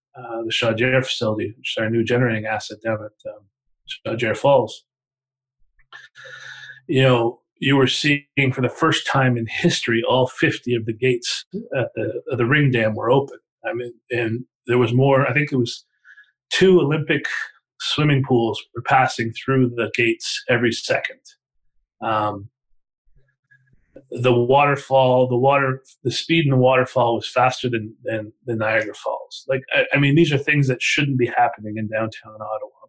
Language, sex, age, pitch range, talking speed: English, male, 30-49, 115-135 Hz, 165 wpm